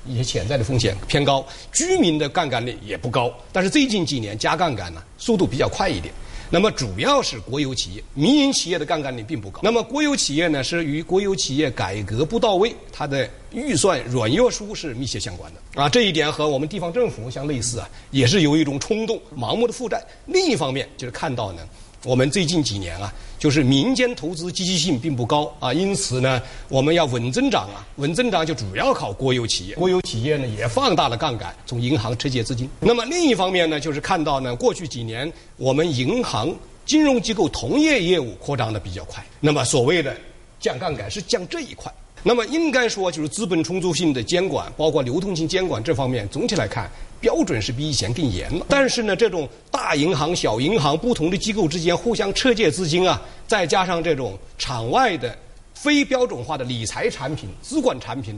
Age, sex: 50-69, male